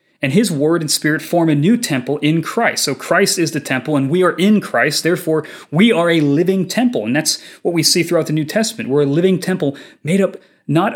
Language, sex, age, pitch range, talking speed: English, male, 30-49, 140-190 Hz, 235 wpm